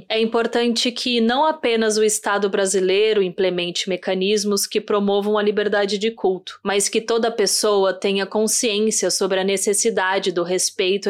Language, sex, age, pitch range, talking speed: Portuguese, female, 20-39, 190-220 Hz, 145 wpm